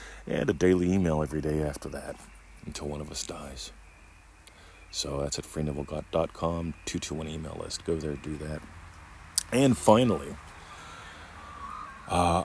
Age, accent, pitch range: 40-59, American, 70-85 Hz